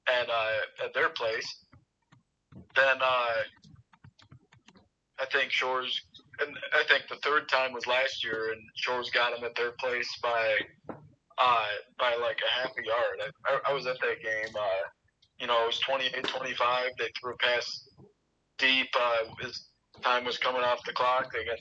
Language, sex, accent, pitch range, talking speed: English, male, American, 120-150 Hz, 170 wpm